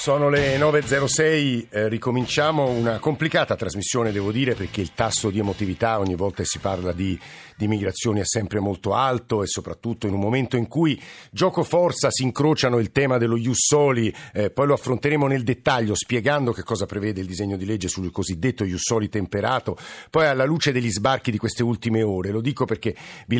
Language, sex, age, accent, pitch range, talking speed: Italian, male, 50-69, native, 105-130 Hz, 180 wpm